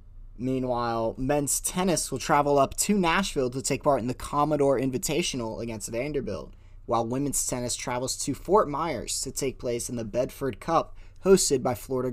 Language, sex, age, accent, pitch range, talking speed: English, male, 20-39, American, 115-155 Hz, 170 wpm